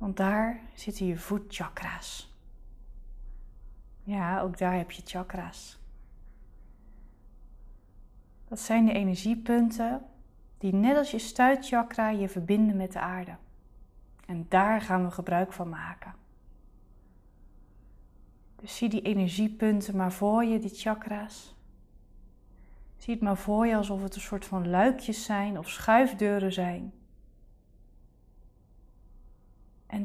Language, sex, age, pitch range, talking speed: Dutch, female, 20-39, 170-225 Hz, 115 wpm